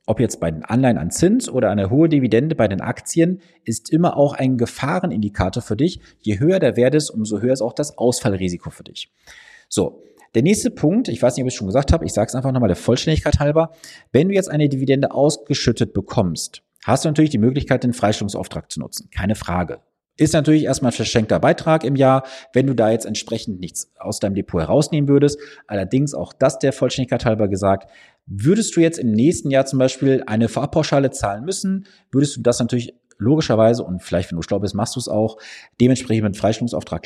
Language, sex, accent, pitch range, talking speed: German, male, German, 110-150 Hz, 210 wpm